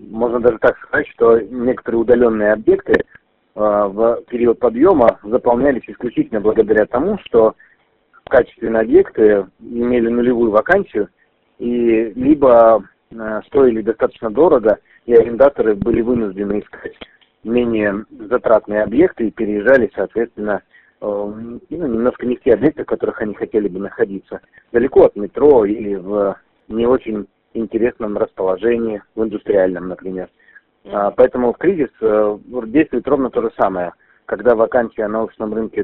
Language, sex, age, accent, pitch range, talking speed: Russian, male, 40-59, native, 110-135 Hz, 120 wpm